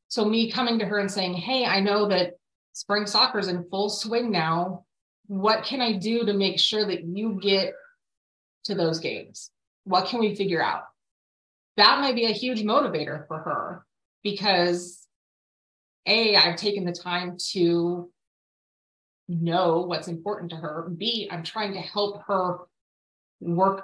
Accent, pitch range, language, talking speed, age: American, 175-210 Hz, English, 160 wpm, 30-49